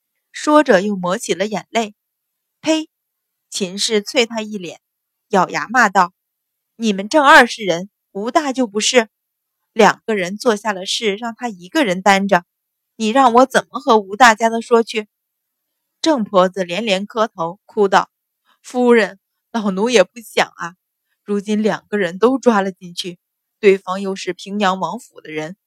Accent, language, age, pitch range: native, Chinese, 20-39, 190-245 Hz